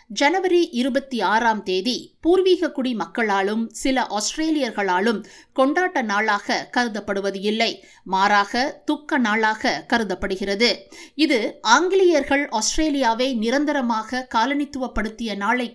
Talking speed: 85 wpm